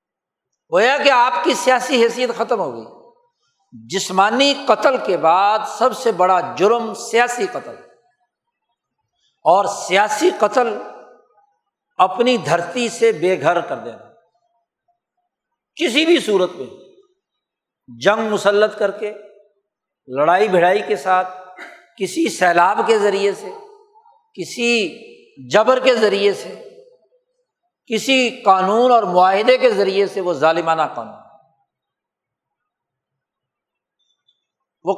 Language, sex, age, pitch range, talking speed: Urdu, male, 60-79, 185-300 Hz, 105 wpm